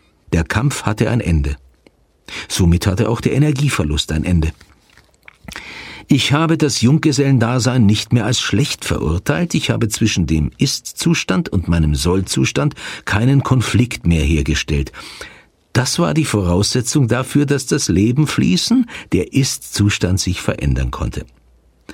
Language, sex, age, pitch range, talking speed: German, male, 50-69, 85-130 Hz, 130 wpm